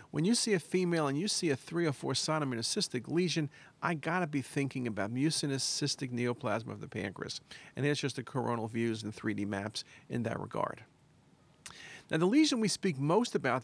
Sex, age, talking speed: male, 50-69, 200 wpm